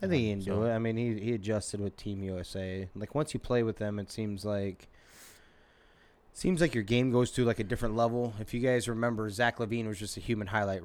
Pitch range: 95-115 Hz